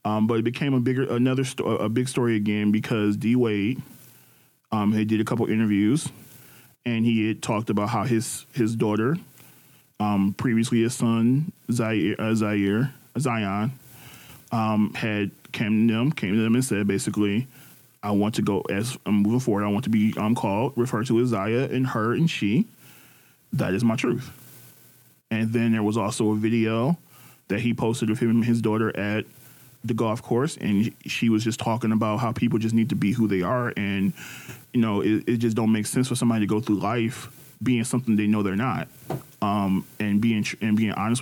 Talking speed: 195 wpm